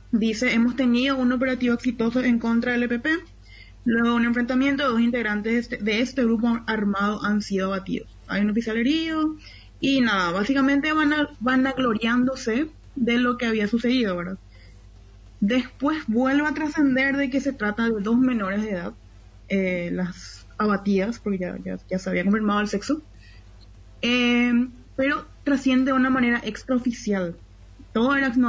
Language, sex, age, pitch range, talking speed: Spanish, female, 20-39, 205-260 Hz, 155 wpm